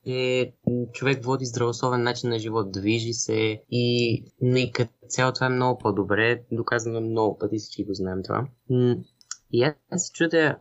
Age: 20-39